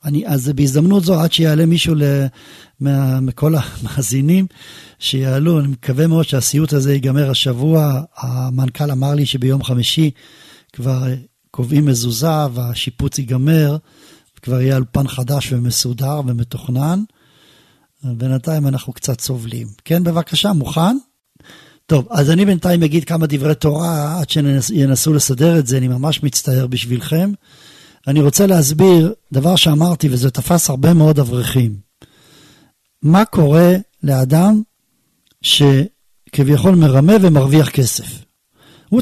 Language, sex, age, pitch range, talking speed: Hebrew, male, 40-59, 135-175 Hz, 120 wpm